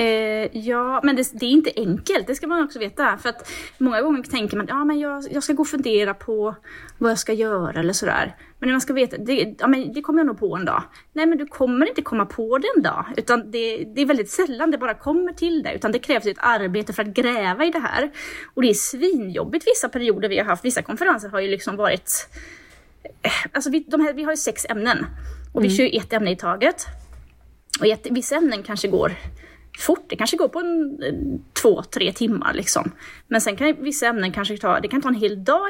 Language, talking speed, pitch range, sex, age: Swedish, 235 wpm, 215-295 Hz, female, 20-39